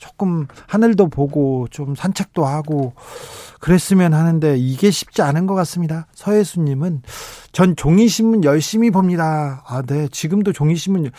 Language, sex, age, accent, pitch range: Korean, male, 40-59, native, 135-195 Hz